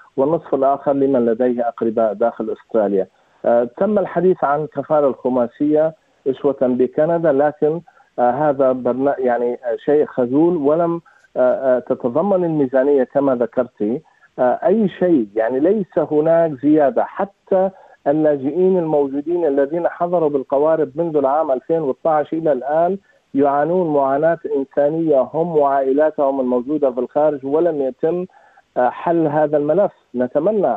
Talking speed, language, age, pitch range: 120 wpm, Arabic, 50-69, 130-160 Hz